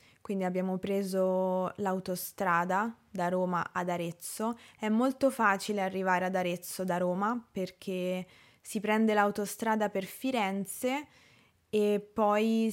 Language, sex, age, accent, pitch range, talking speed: Italian, female, 20-39, native, 180-210 Hz, 115 wpm